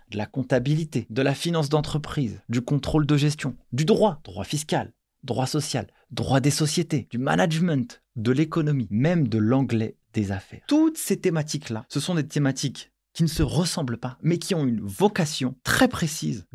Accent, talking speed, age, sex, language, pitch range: French, 175 wpm, 30-49, male, French, 120-165 Hz